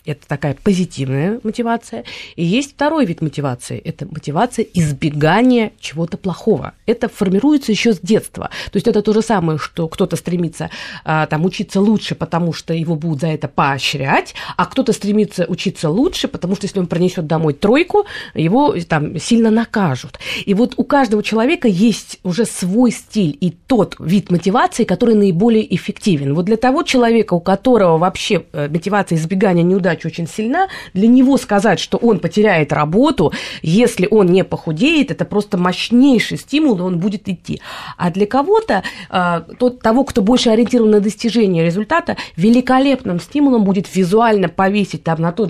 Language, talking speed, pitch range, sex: Russian, 155 wpm, 170-230 Hz, female